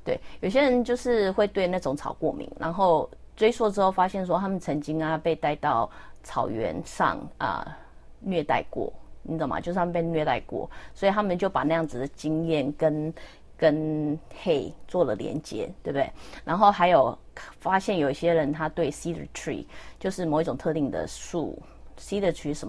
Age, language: 30-49, English